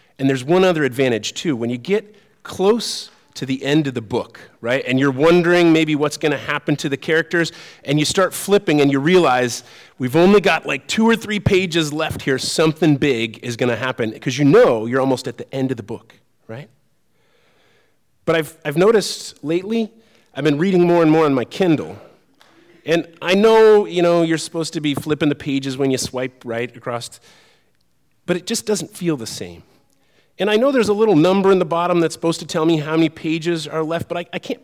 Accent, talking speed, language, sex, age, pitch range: American, 215 wpm, English, male, 30-49, 135-190 Hz